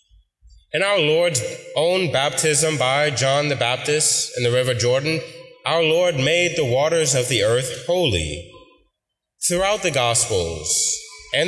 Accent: American